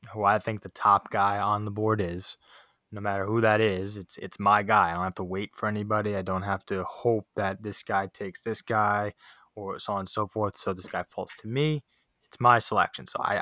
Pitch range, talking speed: 95-115 Hz, 240 wpm